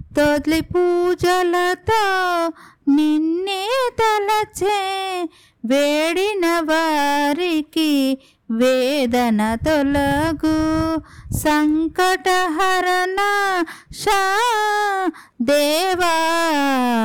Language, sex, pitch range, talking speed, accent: Telugu, female, 285-370 Hz, 40 wpm, native